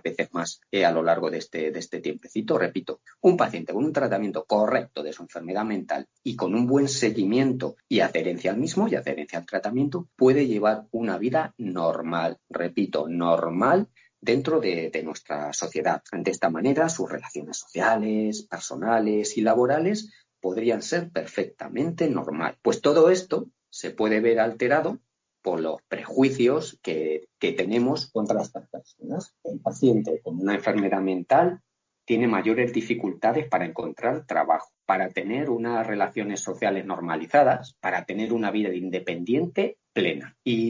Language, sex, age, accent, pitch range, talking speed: Spanish, male, 40-59, Spanish, 100-135 Hz, 145 wpm